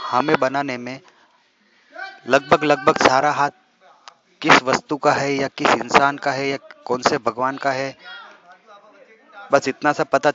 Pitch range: 130-155 Hz